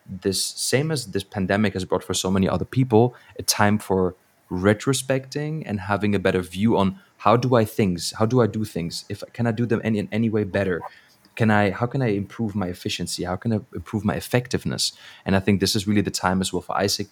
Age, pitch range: 20-39, 95-115 Hz